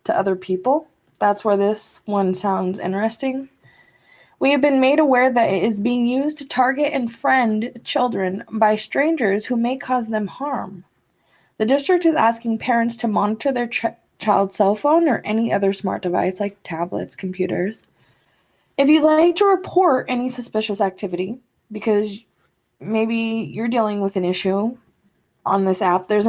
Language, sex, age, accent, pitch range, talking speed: English, female, 20-39, American, 200-255 Hz, 155 wpm